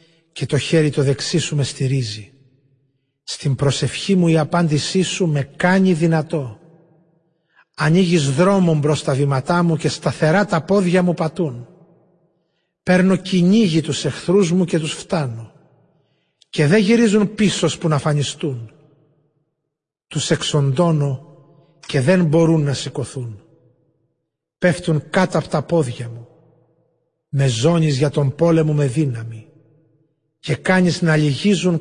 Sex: male